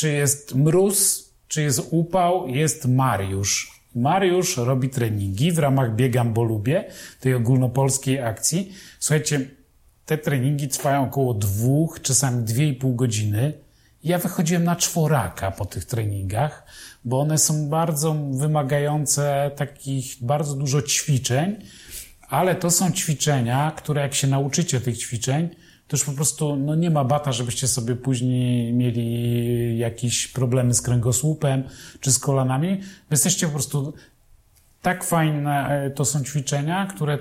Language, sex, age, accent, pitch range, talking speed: Polish, male, 40-59, native, 130-155 Hz, 135 wpm